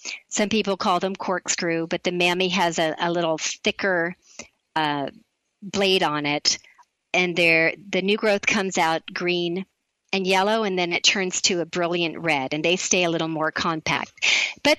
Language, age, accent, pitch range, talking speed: English, 40-59, American, 170-210 Hz, 170 wpm